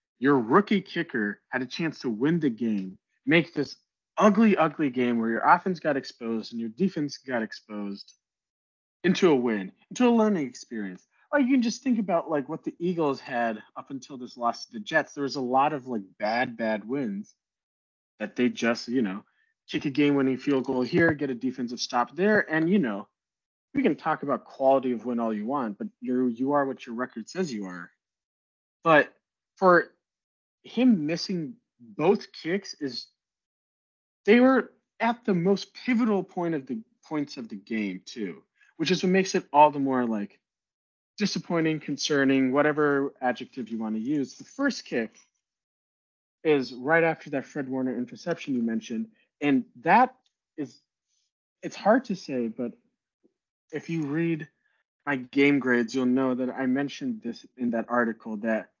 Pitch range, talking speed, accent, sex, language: 125-190 Hz, 175 wpm, American, male, English